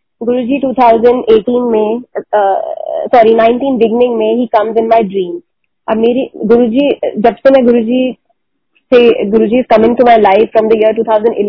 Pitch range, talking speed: 210-240 Hz, 110 wpm